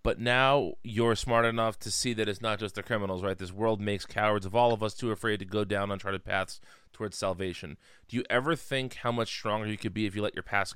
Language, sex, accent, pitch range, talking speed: English, male, American, 100-120 Hz, 255 wpm